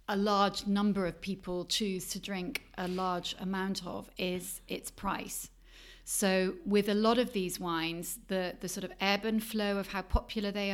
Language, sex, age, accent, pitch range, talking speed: English, female, 30-49, British, 170-205 Hz, 185 wpm